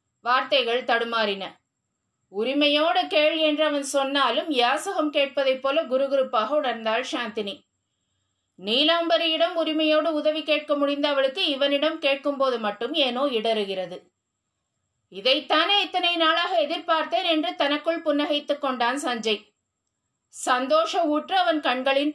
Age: 30-49